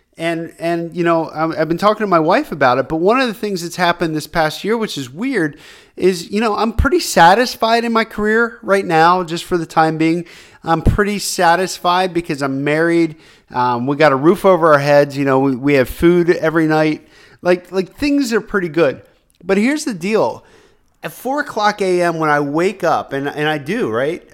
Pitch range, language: 140-185 Hz, English